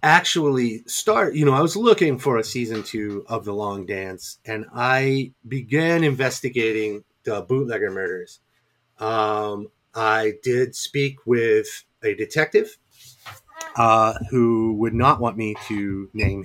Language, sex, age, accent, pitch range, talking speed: English, male, 30-49, American, 105-130 Hz, 135 wpm